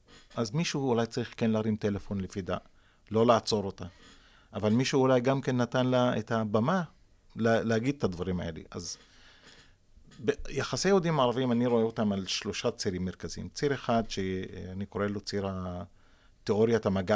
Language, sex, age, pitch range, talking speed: Hebrew, male, 40-59, 100-125 Hz, 155 wpm